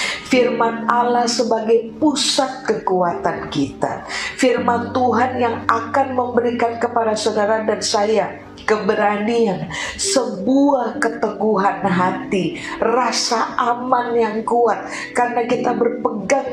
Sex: female